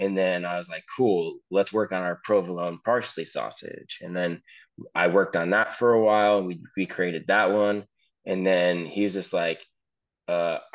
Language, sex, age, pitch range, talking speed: English, male, 20-39, 85-100 Hz, 195 wpm